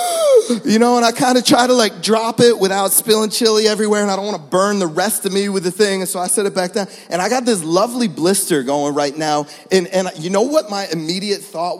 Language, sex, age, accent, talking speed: English, male, 30-49, American, 265 wpm